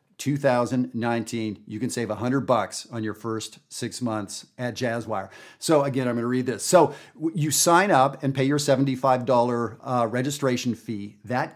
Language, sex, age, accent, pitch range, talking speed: English, male, 50-69, American, 110-135 Hz, 165 wpm